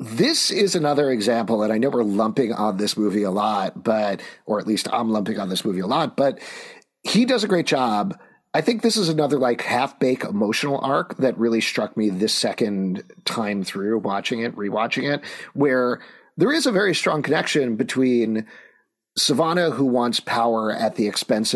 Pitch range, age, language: 110-140 Hz, 40-59, English